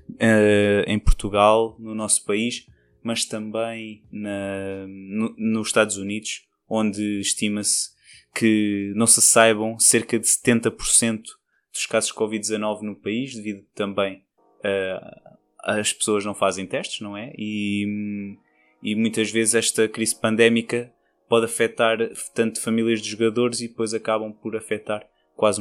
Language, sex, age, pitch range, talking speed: Portuguese, male, 20-39, 105-115 Hz, 135 wpm